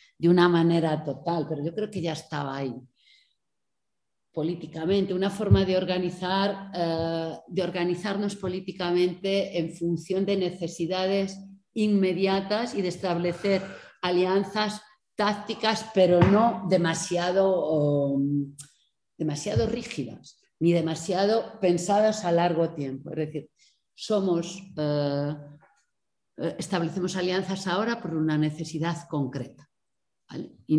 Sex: female